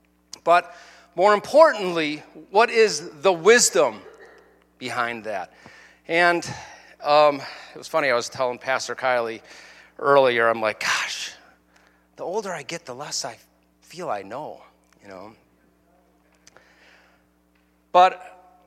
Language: English